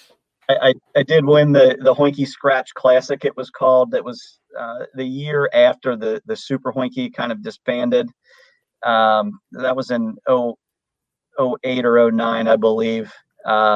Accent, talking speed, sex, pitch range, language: American, 155 wpm, male, 115-145 Hz, English